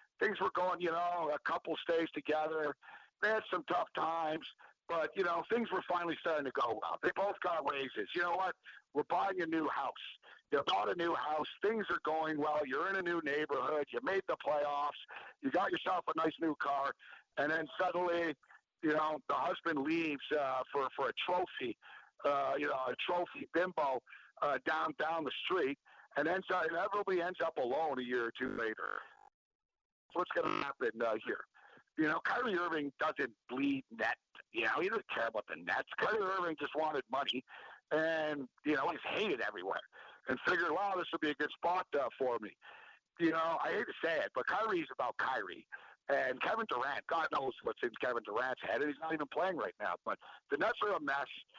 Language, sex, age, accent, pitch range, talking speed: English, male, 50-69, American, 150-180 Hz, 200 wpm